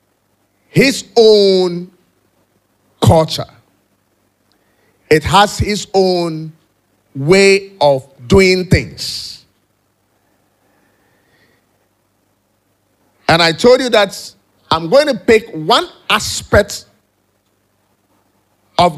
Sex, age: male, 50-69